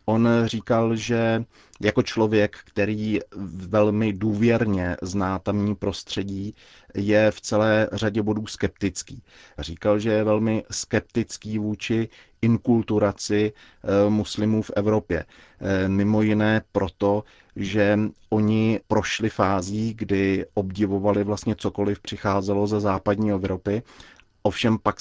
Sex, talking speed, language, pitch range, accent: male, 105 wpm, Czech, 100-110 Hz, native